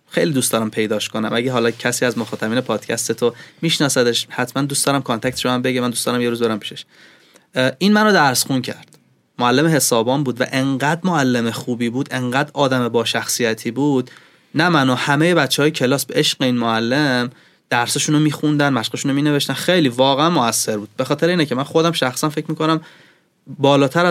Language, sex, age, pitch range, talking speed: Persian, male, 20-39, 125-155 Hz, 185 wpm